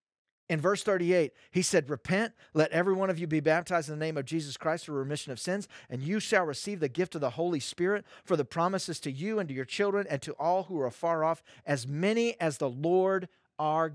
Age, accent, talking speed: 40-59, American, 235 wpm